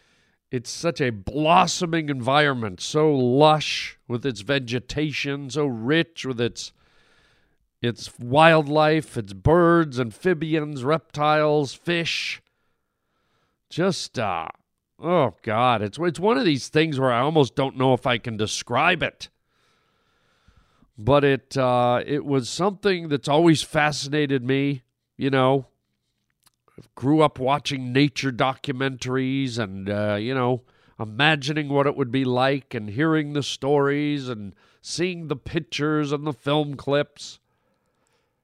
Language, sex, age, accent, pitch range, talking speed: English, male, 40-59, American, 125-155 Hz, 125 wpm